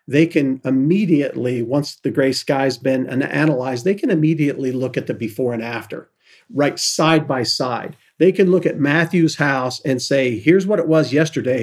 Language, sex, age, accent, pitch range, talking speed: English, male, 50-69, American, 130-150 Hz, 180 wpm